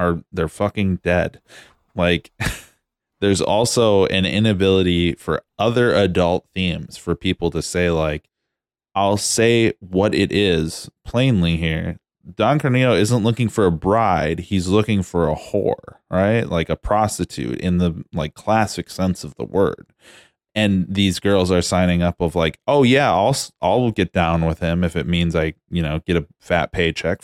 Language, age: English, 20-39